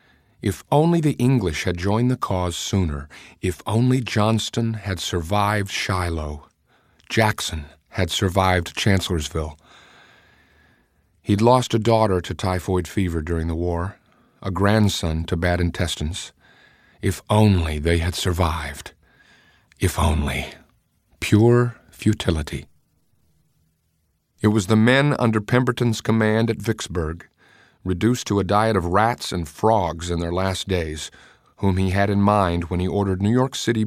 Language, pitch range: English, 85-110 Hz